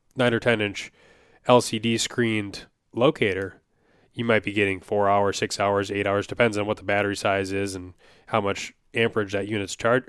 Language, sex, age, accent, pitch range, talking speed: English, male, 20-39, American, 100-115 Hz, 185 wpm